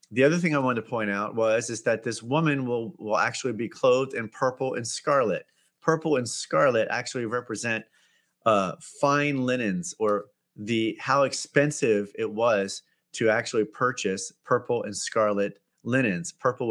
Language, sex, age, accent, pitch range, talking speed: English, male, 30-49, American, 110-140 Hz, 160 wpm